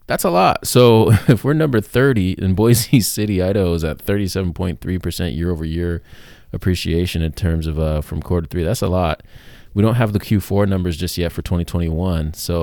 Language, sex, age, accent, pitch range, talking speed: English, male, 20-39, American, 80-105 Hz, 190 wpm